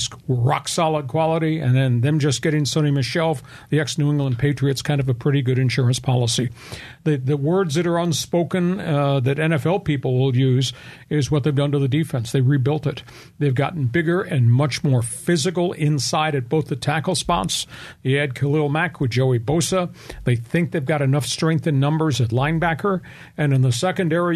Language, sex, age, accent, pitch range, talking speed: English, male, 50-69, American, 130-160 Hz, 185 wpm